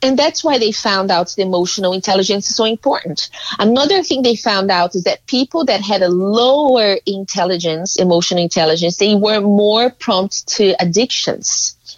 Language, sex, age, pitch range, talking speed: English, female, 30-49, 180-230 Hz, 165 wpm